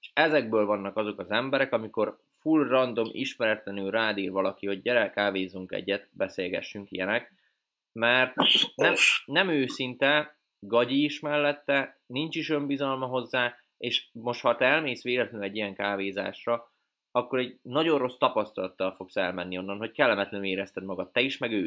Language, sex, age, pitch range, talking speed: Hungarian, male, 20-39, 100-130 Hz, 150 wpm